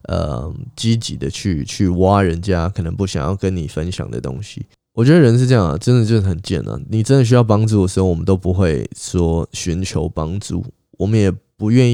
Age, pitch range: 20-39, 90-115 Hz